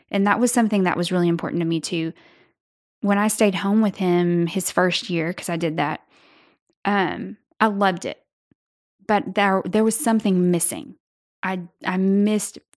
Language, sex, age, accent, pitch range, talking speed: English, female, 10-29, American, 175-205 Hz, 175 wpm